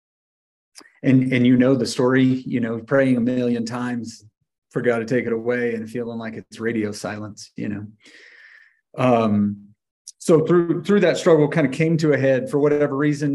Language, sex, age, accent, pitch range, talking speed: English, male, 40-59, American, 115-140 Hz, 185 wpm